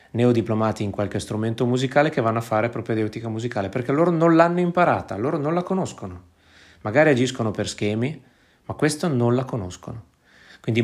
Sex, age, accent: male, 30-49, native